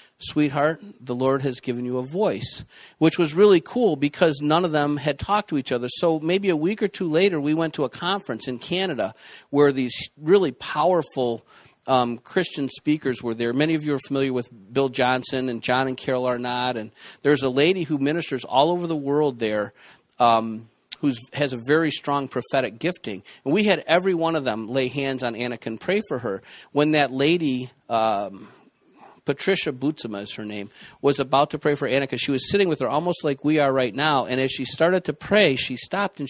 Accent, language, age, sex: American, English, 50-69, male